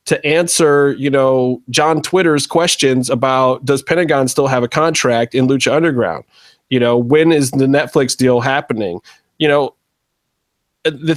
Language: English